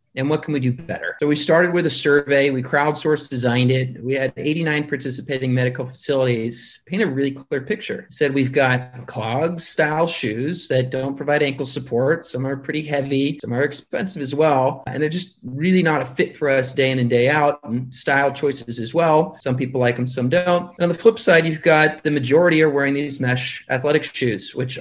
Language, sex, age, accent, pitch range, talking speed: English, male, 30-49, American, 130-155 Hz, 215 wpm